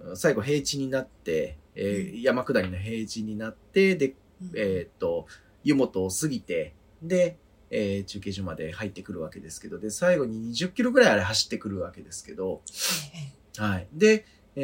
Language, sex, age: Japanese, male, 30-49